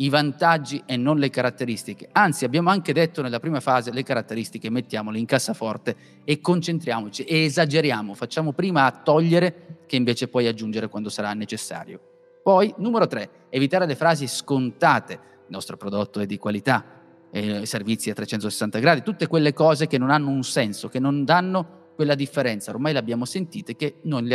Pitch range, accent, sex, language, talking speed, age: 110-155 Hz, native, male, Italian, 175 wpm, 30-49